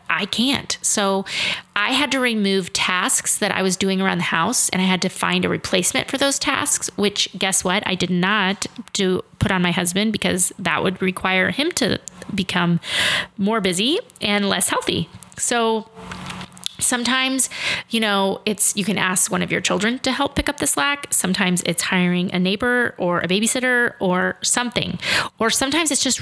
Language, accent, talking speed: English, American, 185 wpm